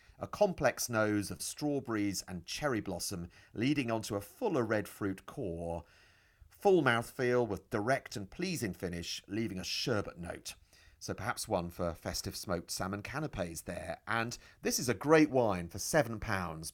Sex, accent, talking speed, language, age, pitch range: male, British, 155 wpm, English, 40-59, 95-120 Hz